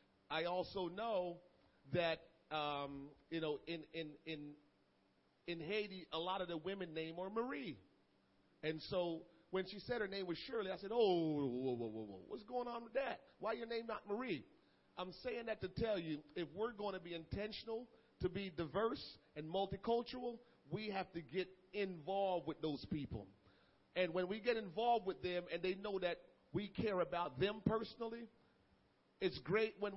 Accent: American